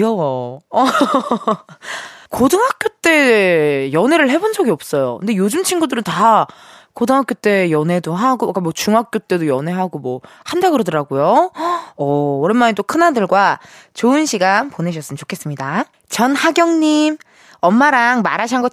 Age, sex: 20-39, female